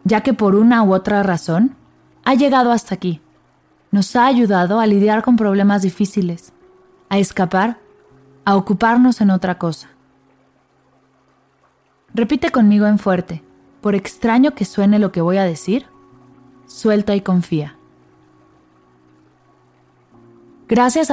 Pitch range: 135-215 Hz